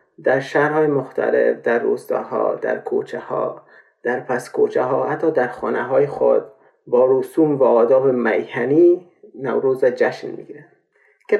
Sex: male